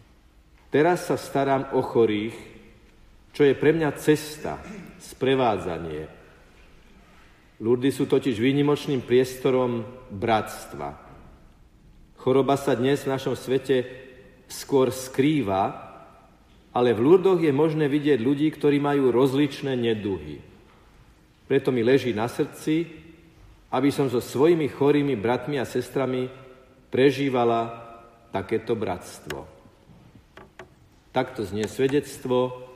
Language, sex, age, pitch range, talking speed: Slovak, male, 50-69, 105-135 Hz, 100 wpm